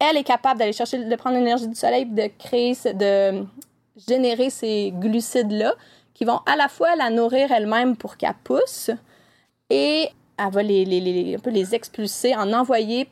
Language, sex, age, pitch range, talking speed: French, female, 30-49, 205-255 Hz, 170 wpm